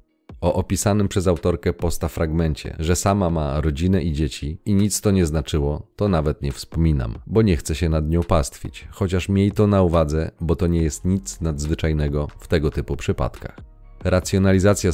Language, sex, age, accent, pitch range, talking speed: Polish, male, 40-59, native, 80-95 Hz, 175 wpm